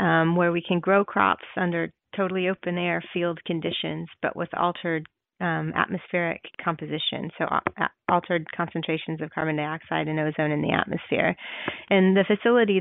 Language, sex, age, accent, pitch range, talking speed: English, female, 30-49, American, 160-185 Hz, 150 wpm